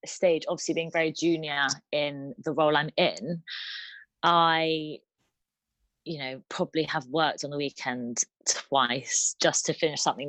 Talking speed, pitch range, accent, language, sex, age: 140 wpm, 145-180 Hz, British, English, female, 20-39